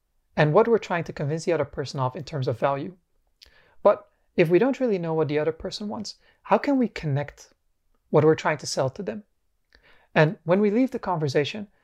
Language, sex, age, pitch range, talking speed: English, male, 30-49, 145-205 Hz, 215 wpm